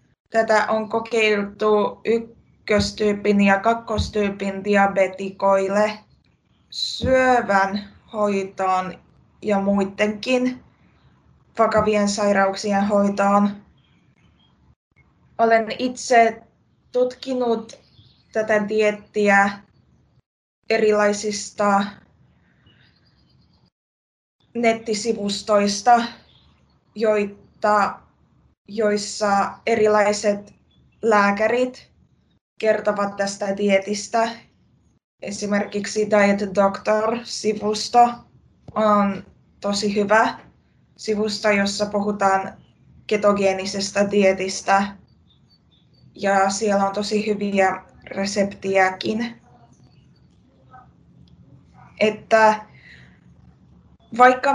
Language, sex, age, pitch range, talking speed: Finnish, female, 20-39, 200-225 Hz, 50 wpm